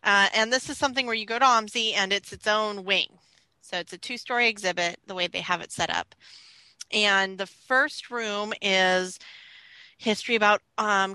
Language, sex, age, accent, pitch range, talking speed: English, female, 20-39, American, 180-210 Hz, 195 wpm